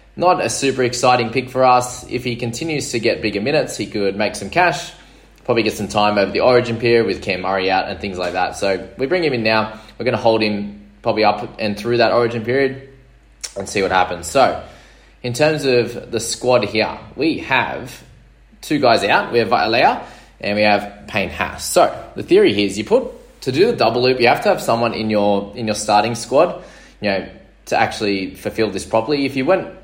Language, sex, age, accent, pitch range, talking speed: English, male, 20-39, Australian, 100-125 Hz, 220 wpm